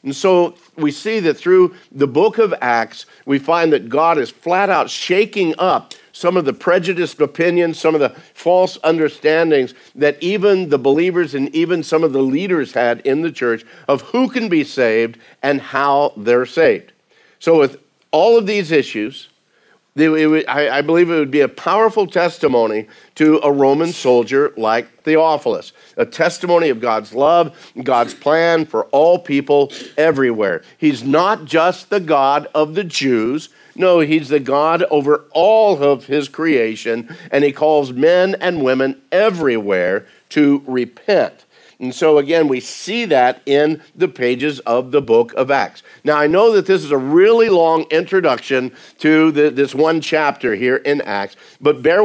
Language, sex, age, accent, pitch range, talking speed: English, male, 50-69, American, 135-175 Hz, 165 wpm